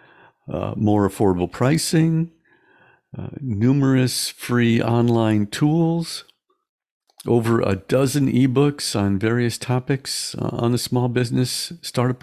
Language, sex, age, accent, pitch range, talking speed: English, male, 50-69, American, 105-140 Hz, 110 wpm